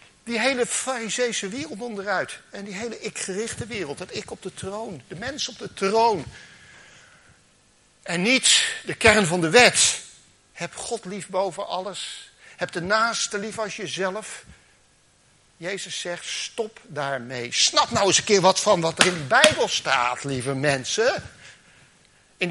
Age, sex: 60-79, male